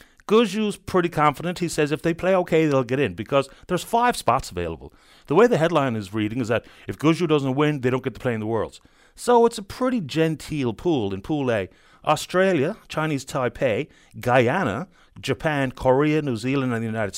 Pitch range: 125-180 Hz